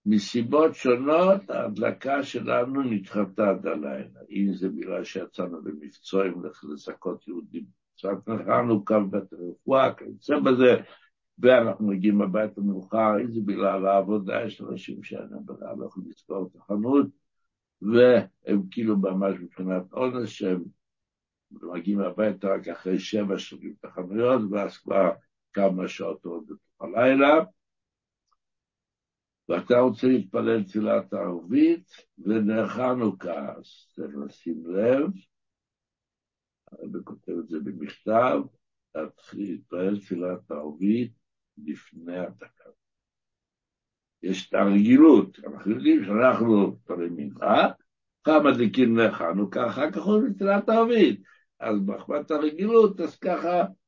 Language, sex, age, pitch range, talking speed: Hebrew, male, 60-79, 95-145 Hz, 100 wpm